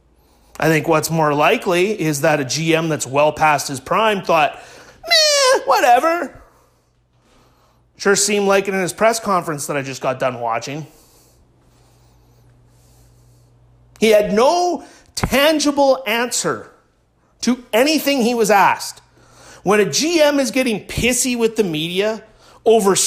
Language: English